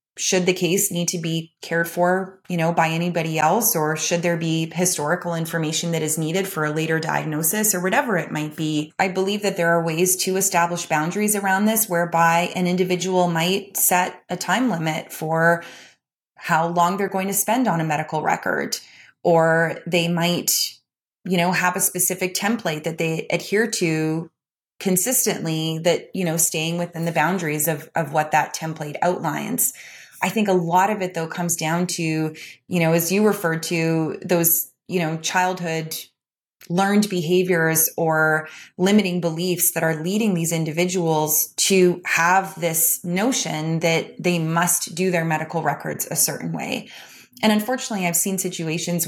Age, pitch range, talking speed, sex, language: 20-39, 160-185 Hz, 165 wpm, female, English